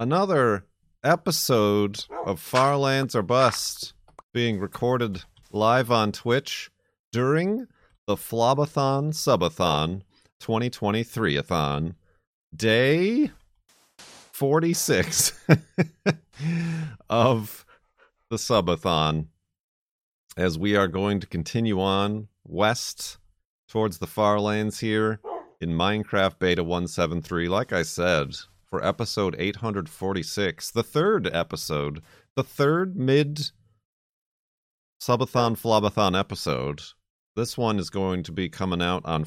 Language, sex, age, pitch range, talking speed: English, male, 40-59, 90-120 Hz, 90 wpm